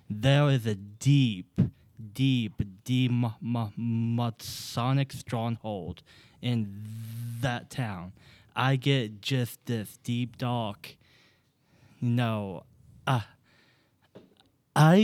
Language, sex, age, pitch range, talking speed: English, male, 20-39, 115-135 Hz, 90 wpm